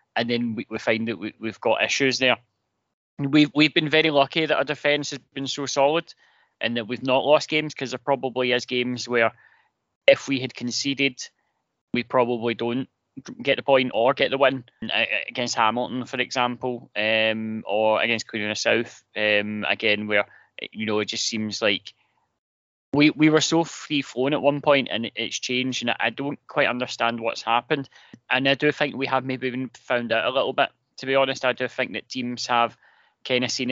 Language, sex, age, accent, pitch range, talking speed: English, male, 30-49, British, 115-135 Hz, 200 wpm